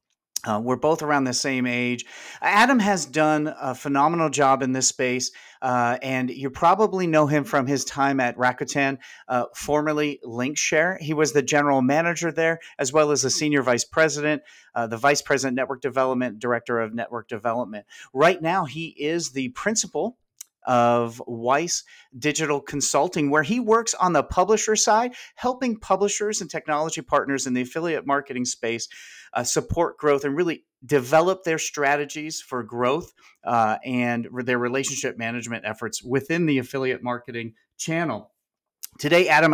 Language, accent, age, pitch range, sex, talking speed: English, American, 40-59, 125-160 Hz, male, 155 wpm